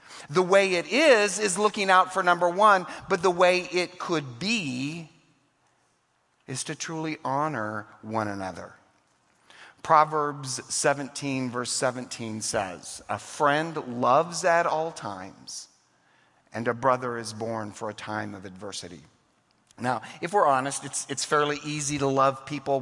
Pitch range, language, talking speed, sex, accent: 110-150 Hz, English, 140 wpm, male, American